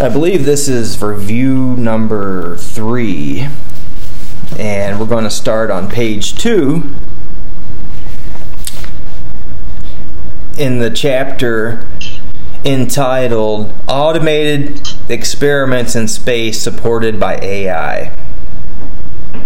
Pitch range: 105-125 Hz